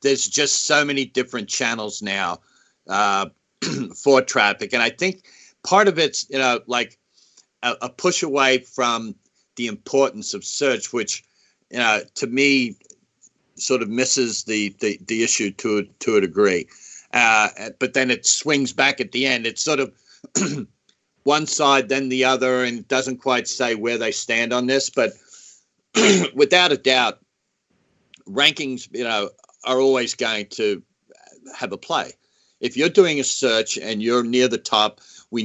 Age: 50-69